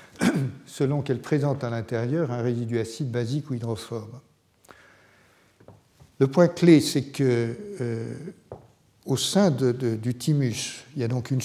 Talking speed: 145 wpm